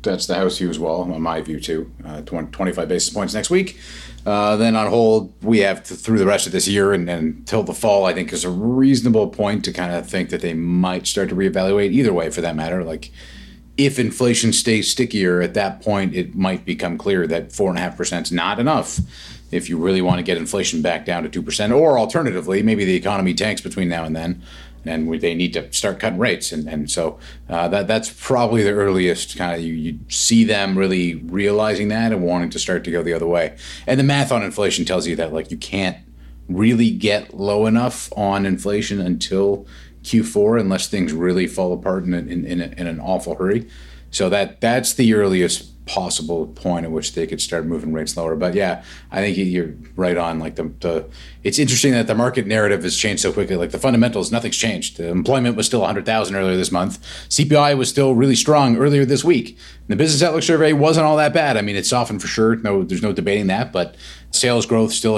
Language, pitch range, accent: English, 85-115 Hz, American